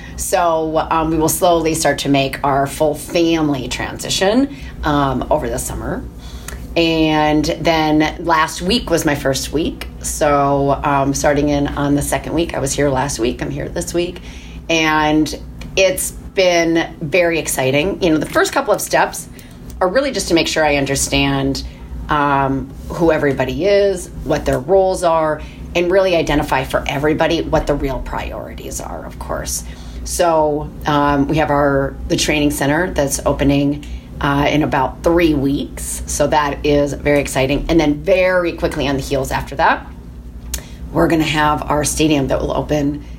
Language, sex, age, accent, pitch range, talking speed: English, female, 30-49, American, 135-160 Hz, 165 wpm